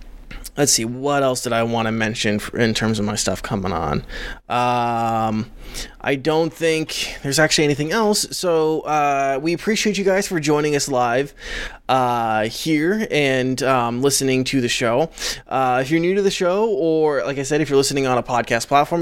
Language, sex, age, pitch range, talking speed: English, male, 20-39, 125-165 Hz, 190 wpm